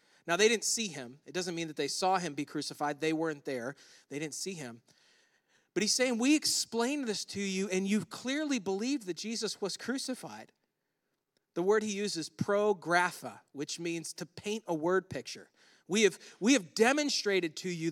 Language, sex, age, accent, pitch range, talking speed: English, male, 40-59, American, 170-235 Hz, 190 wpm